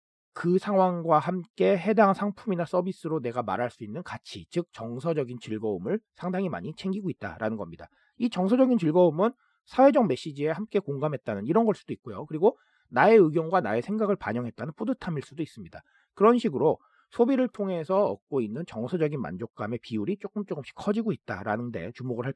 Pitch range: 130-210 Hz